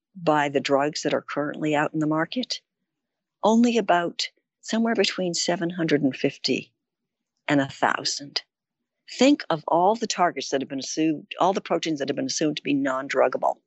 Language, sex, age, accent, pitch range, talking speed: English, female, 60-79, American, 140-180 Hz, 160 wpm